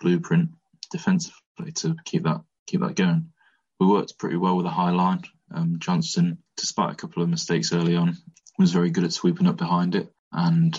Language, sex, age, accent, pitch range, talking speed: English, male, 20-39, British, 165-185 Hz, 190 wpm